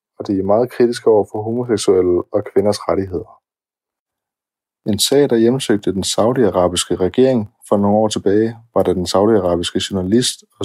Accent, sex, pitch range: native, male, 90-115 Hz